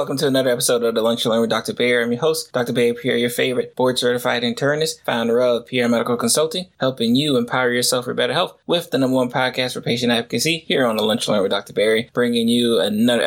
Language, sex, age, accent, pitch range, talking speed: English, male, 20-39, American, 120-150 Hz, 235 wpm